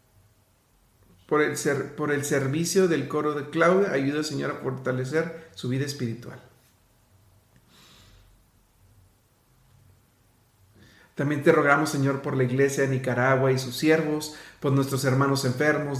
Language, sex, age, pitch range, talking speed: Spanish, male, 50-69, 125-145 Hz, 125 wpm